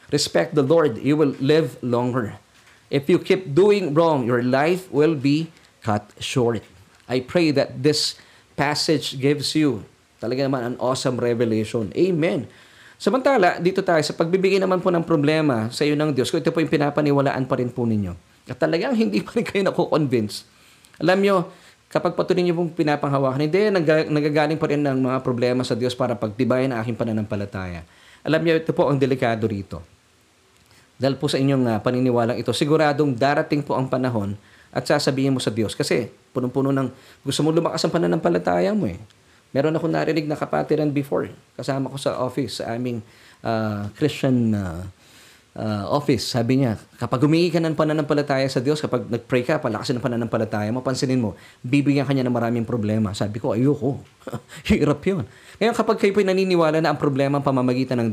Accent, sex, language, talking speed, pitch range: native, male, Filipino, 180 wpm, 115-155 Hz